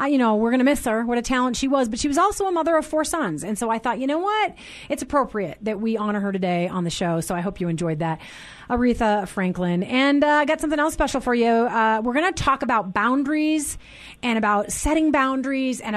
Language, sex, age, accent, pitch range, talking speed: English, female, 30-49, American, 210-280 Hz, 250 wpm